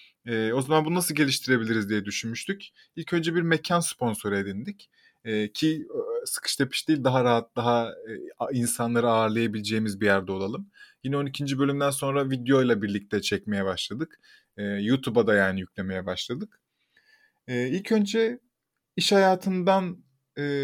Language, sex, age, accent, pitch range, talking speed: Turkish, male, 20-39, native, 115-170 Hz, 125 wpm